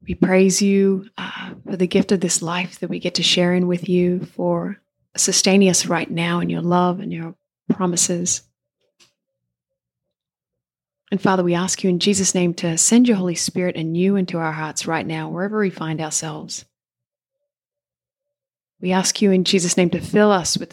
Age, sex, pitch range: 30-49, female, 165-195 Hz